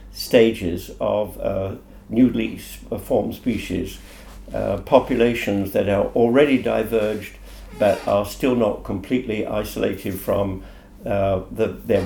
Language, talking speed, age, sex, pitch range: Hungarian, 105 wpm, 60-79, male, 100-120 Hz